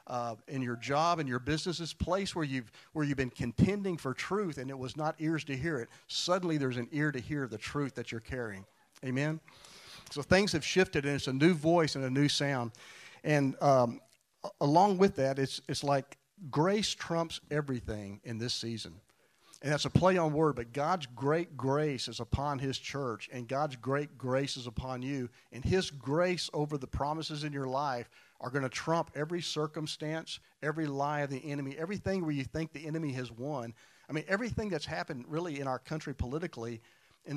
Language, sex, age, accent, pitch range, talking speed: English, male, 50-69, American, 130-155 Hz, 200 wpm